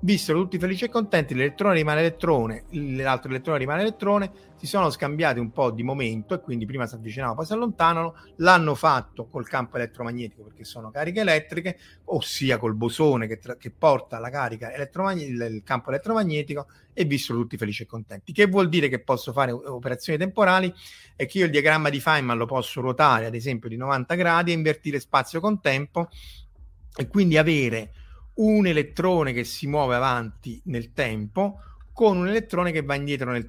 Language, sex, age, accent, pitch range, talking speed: Italian, male, 30-49, native, 125-170 Hz, 175 wpm